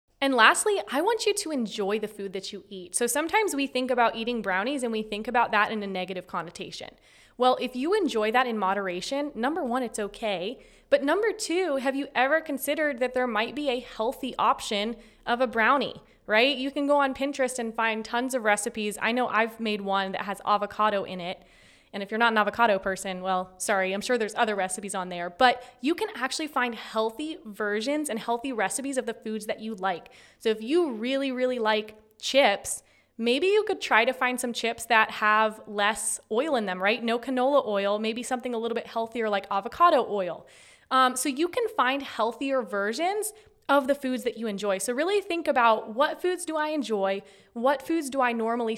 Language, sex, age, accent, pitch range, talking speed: English, female, 20-39, American, 215-275 Hz, 210 wpm